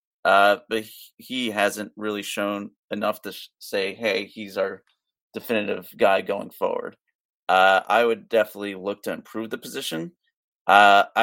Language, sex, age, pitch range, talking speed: English, male, 30-49, 100-120 Hz, 145 wpm